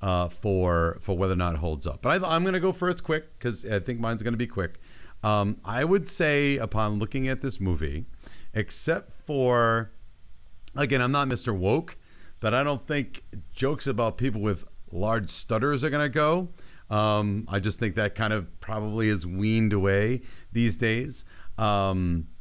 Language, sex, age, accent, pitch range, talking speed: English, male, 40-59, American, 100-130 Hz, 185 wpm